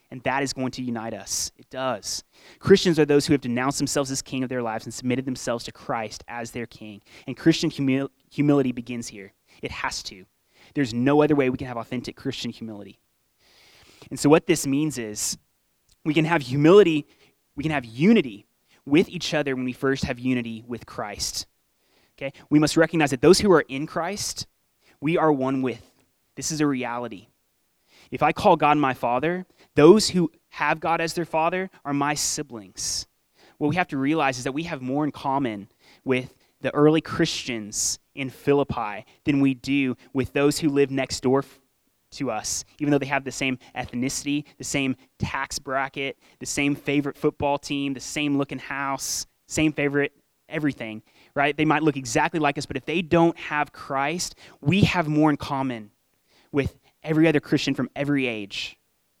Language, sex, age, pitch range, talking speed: English, male, 20-39, 125-150 Hz, 185 wpm